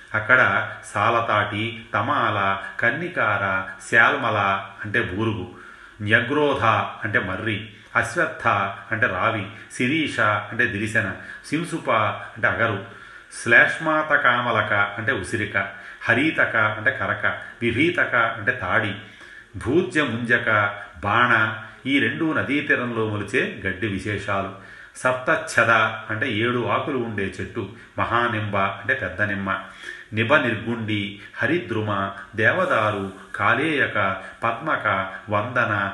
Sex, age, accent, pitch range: male, 30-49, native, 100-120 Hz